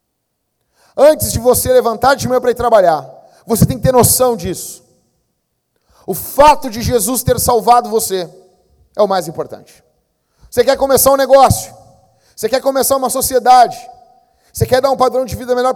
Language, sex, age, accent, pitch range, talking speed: Portuguese, male, 40-59, Brazilian, 180-260 Hz, 170 wpm